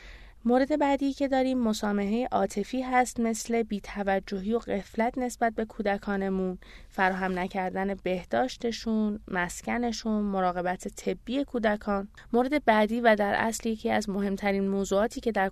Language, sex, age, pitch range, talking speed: Persian, female, 20-39, 185-225 Hz, 125 wpm